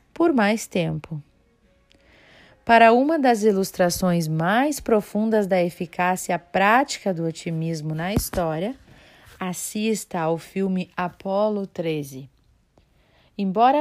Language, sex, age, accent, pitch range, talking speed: Portuguese, female, 40-59, Brazilian, 165-225 Hz, 95 wpm